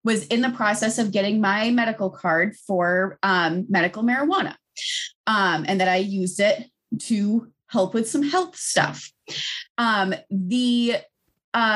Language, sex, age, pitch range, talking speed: English, female, 20-39, 190-240 Hz, 145 wpm